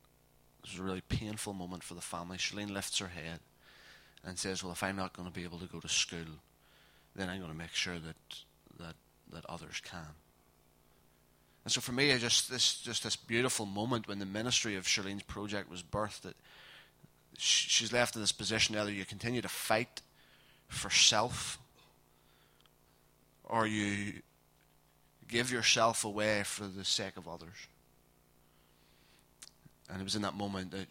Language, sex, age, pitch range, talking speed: English, male, 20-39, 85-100 Hz, 170 wpm